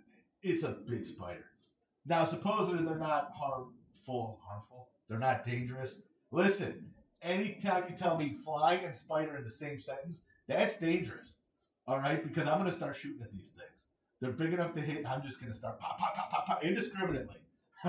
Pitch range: 125-170 Hz